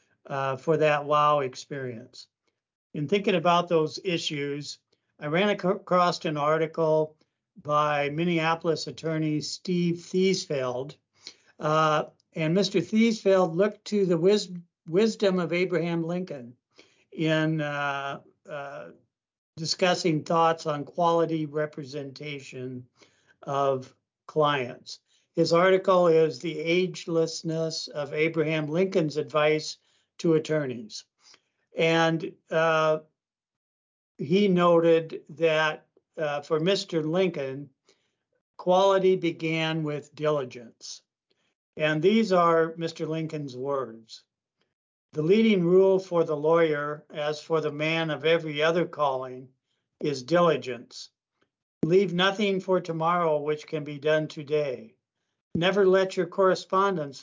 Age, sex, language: 60-79, male, English